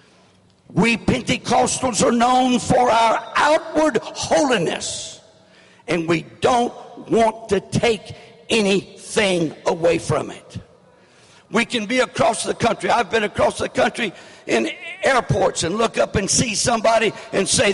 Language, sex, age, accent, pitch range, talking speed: English, male, 60-79, American, 210-265 Hz, 130 wpm